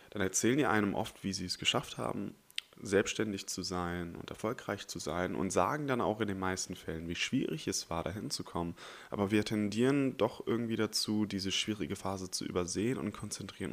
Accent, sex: German, male